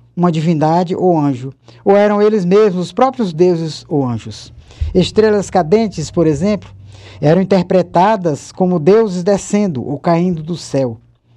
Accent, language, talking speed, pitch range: Brazilian, Portuguese, 135 wpm, 140-205 Hz